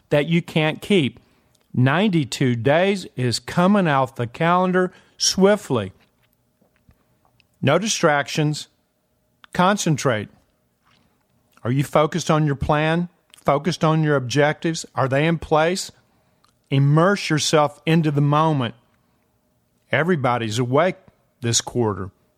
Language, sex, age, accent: English, male, 50-69, American